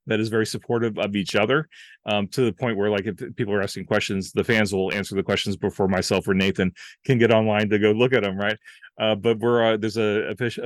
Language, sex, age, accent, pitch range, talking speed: English, male, 30-49, American, 100-120 Hz, 250 wpm